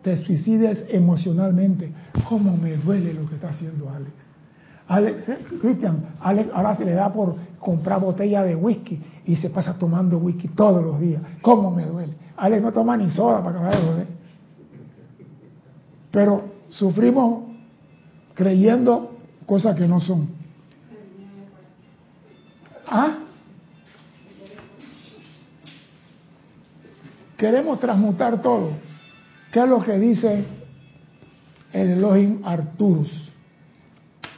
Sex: male